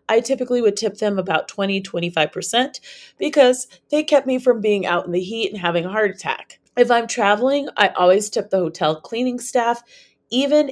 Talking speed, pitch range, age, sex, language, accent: 185 wpm, 180-240 Hz, 30-49, female, English, American